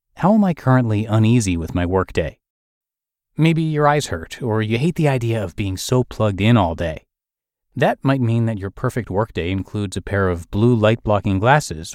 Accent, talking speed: American, 195 wpm